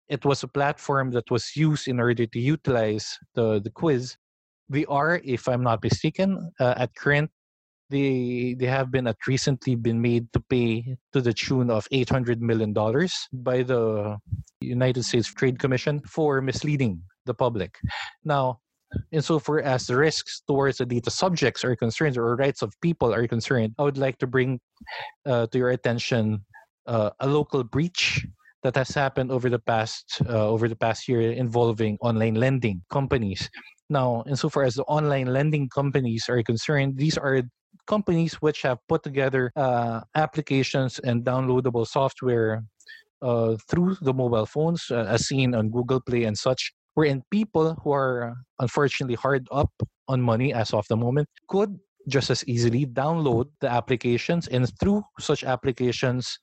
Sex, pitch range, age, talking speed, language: male, 120-140 Hz, 20-39, 160 wpm, English